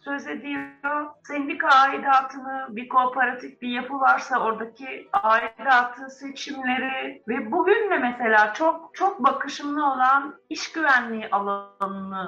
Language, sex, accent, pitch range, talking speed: Turkish, female, native, 220-290 Hz, 110 wpm